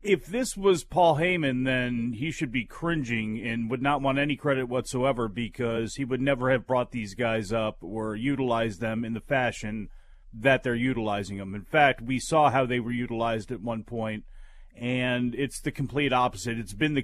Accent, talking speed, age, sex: American, 195 wpm, 40-59, male